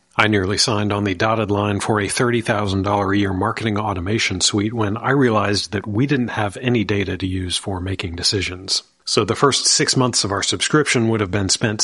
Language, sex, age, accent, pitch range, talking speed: English, male, 40-59, American, 95-115 Hz, 210 wpm